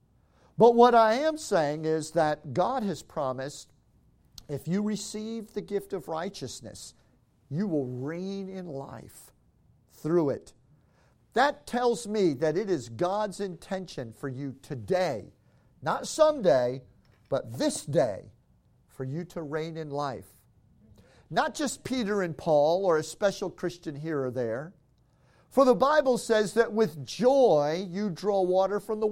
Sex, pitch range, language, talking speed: male, 145-215 Hz, English, 145 wpm